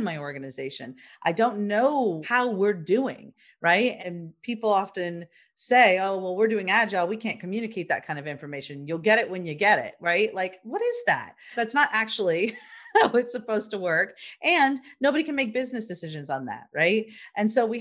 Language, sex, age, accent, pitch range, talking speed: English, female, 40-59, American, 170-235 Hz, 190 wpm